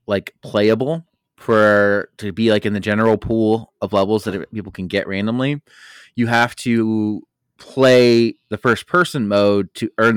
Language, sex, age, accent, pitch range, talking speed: English, male, 20-39, American, 100-120 Hz, 160 wpm